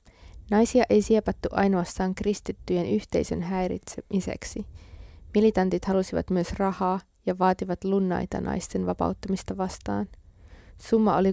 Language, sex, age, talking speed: Finnish, female, 20-39, 100 wpm